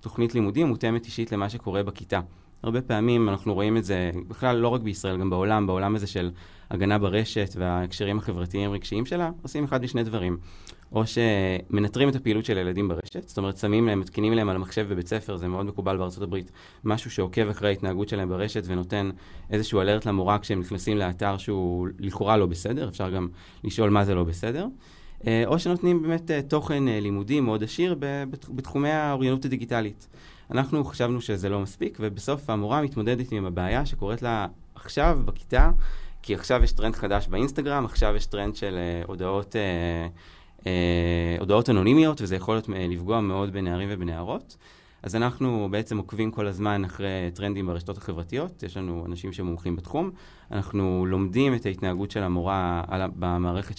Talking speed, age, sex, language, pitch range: 160 wpm, 20-39, male, Hebrew, 95-115 Hz